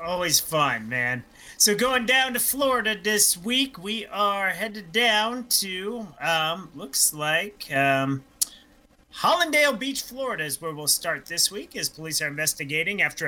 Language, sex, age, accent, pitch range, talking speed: English, male, 30-49, American, 160-215 Hz, 150 wpm